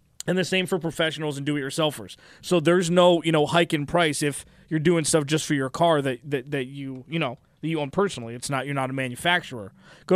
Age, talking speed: 20-39, 235 wpm